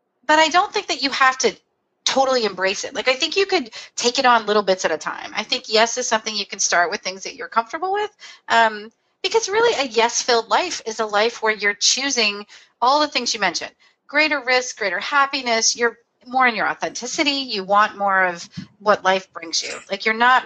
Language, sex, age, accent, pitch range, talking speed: English, female, 30-49, American, 210-295 Hz, 225 wpm